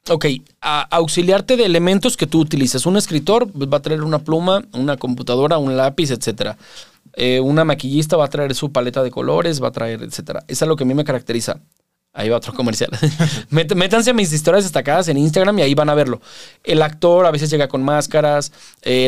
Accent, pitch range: Mexican, 125-175 Hz